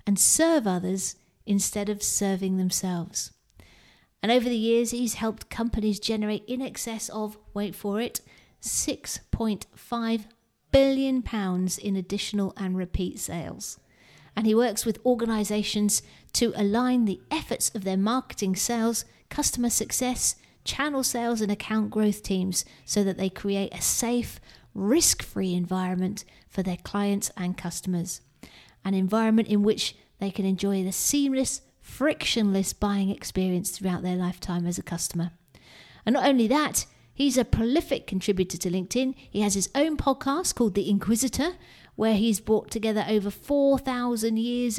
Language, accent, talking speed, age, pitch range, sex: English, British, 140 wpm, 40-59, 190-240 Hz, female